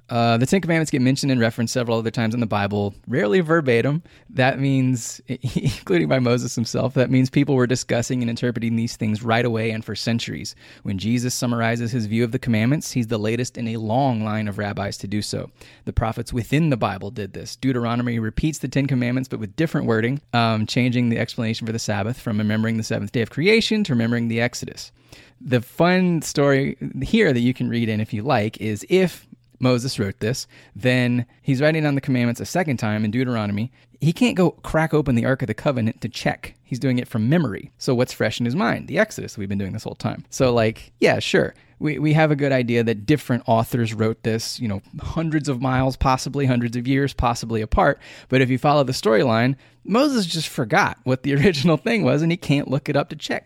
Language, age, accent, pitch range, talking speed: English, 20-39, American, 115-135 Hz, 220 wpm